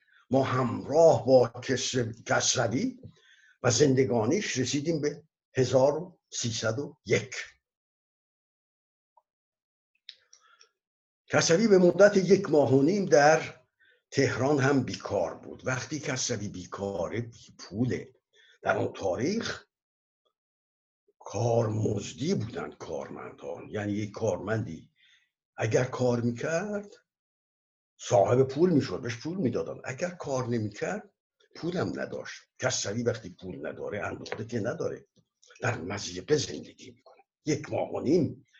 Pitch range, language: 115-150 Hz, Persian